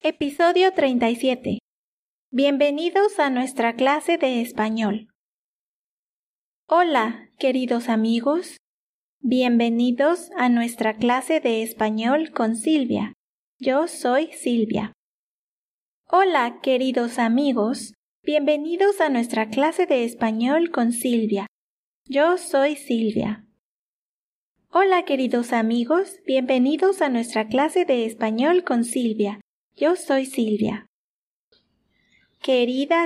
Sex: female